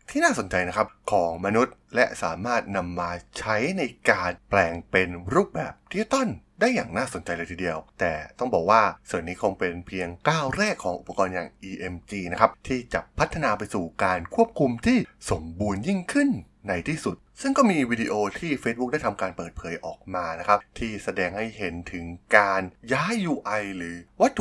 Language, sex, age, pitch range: Thai, male, 20-39, 90-135 Hz